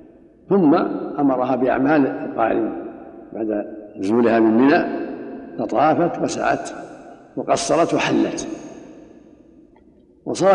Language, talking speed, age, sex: Arabic, 75 wpm, 60-79, male